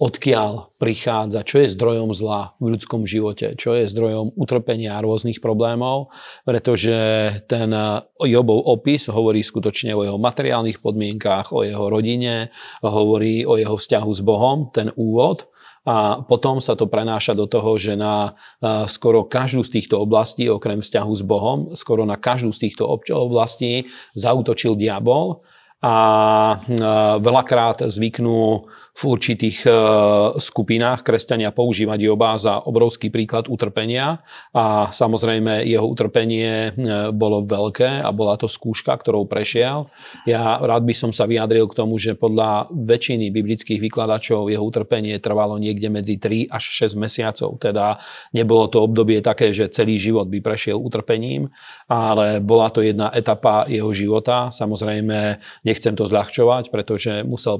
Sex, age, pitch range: male, 40-59, 105-120 Hz